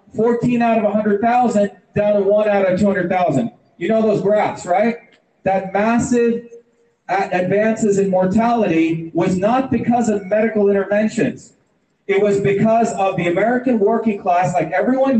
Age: 40-59